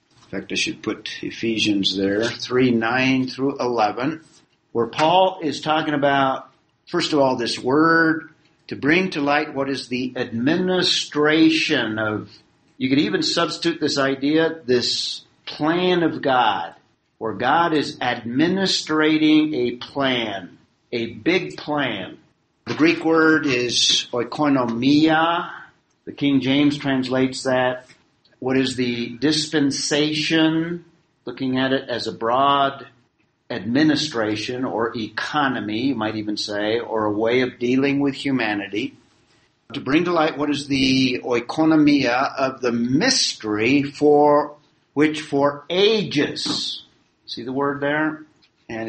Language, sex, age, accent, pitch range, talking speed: English, male, 50-69, American, 120-155 Hz, 125 wpm